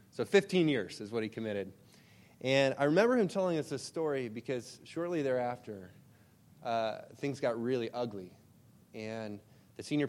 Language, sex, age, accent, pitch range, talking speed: English, male, 20-39, American, 105-125 Hz, 155 wpm